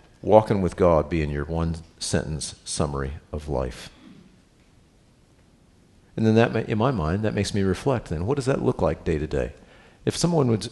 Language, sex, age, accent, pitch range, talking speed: English, male, 50-69, American, 85-120 Hz, 185 wpm